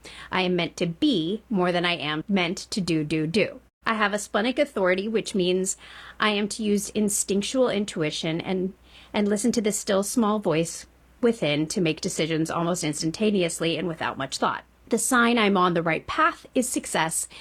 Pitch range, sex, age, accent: 175-225 Hz, female, 40-59, American